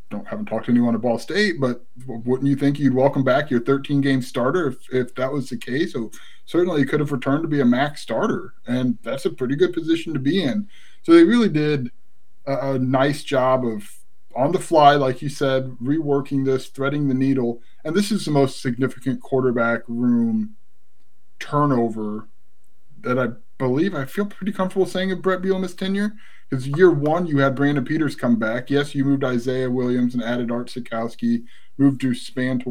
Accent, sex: American, male